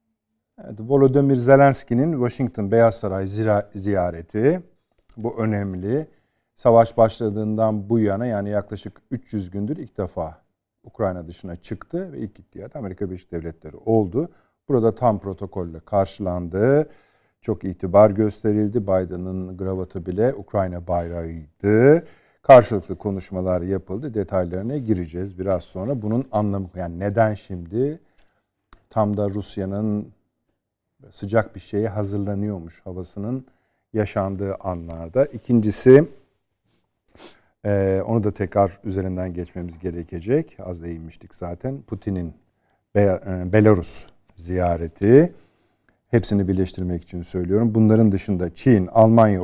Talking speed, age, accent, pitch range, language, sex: 100 wpm, 50-69, native, 95-115 Hz, Turkish, male